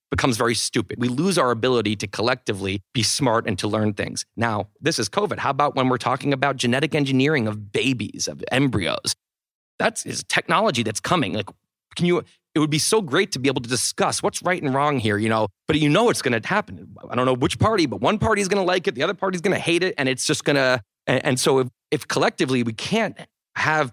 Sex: male